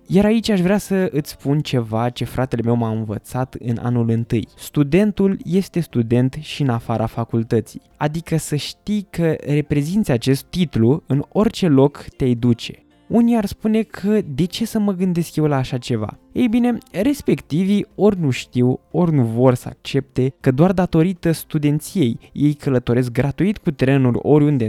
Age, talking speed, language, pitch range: 20-39, 170 wpm, Romanian, 125-180 Hz